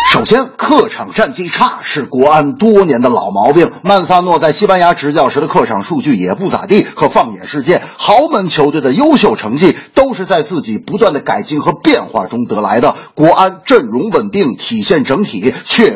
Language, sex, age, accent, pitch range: Chinese, male, 50-69, native, 180-245 Hz